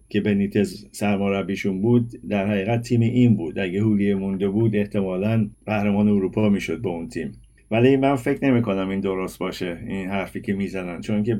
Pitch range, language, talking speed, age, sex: 95-115 Hz, Persian, 175 wpm, 50-69, male